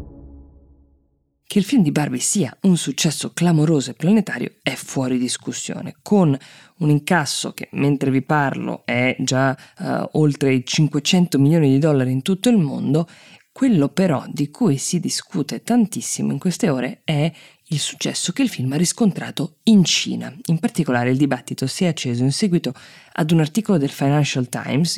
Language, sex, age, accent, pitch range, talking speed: Italian, female, 20-39, native, 130-165 Hz, 165 wpm